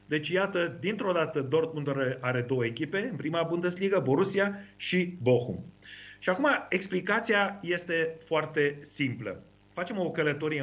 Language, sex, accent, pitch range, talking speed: Romanian, male, native, 130-180 Hz, 135 wpm